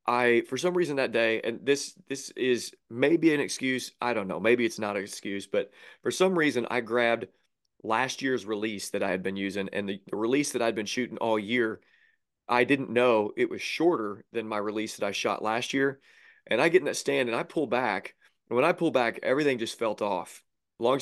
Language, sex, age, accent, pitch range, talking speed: English, male, 30-49, American, 110-130 Hz, 225 wpm